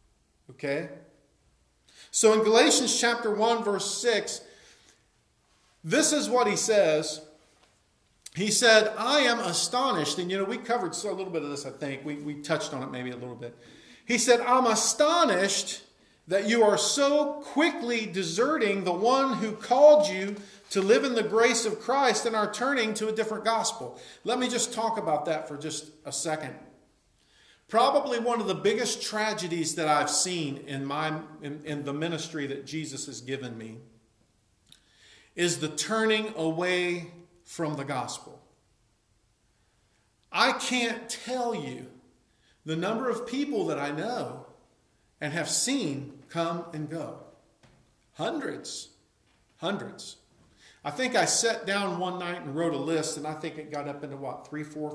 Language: English